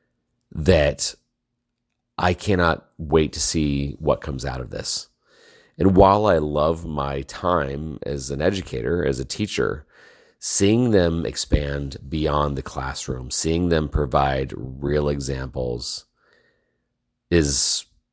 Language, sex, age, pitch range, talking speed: English, male, 40-59, 70-85 Hz, 115 wpm